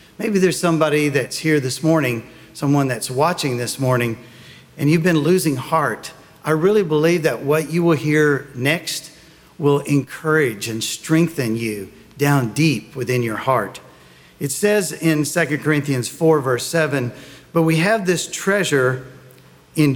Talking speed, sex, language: 150 wpm, male, English